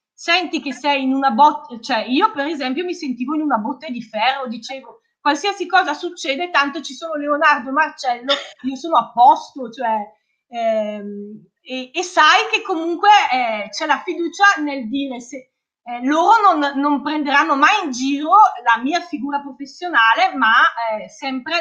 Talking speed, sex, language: 165 wpm, female, Italian